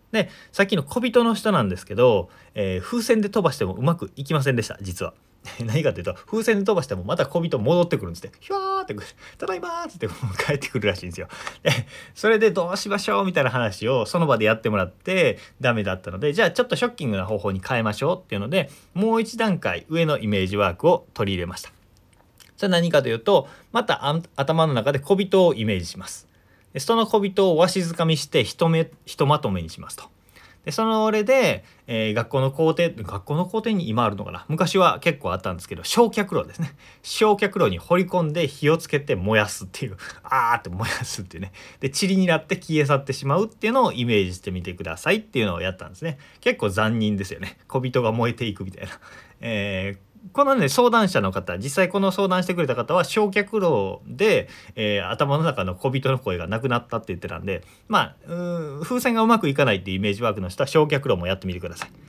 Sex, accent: male, native